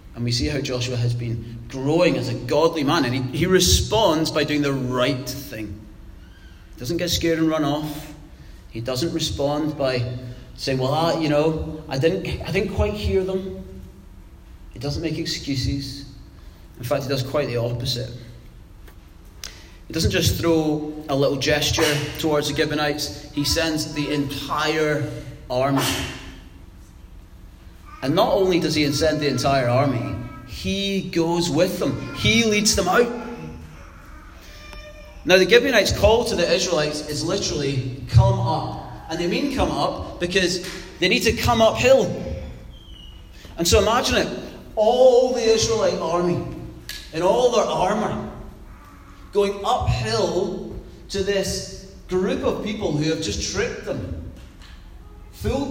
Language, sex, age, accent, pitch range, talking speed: English, male, 30-49, British, 100-160 Hz, 145 wpm